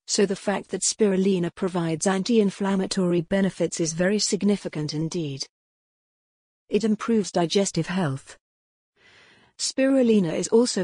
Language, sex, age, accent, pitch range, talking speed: English, female, 40-59, British, 170-205 Hz, 105 wpm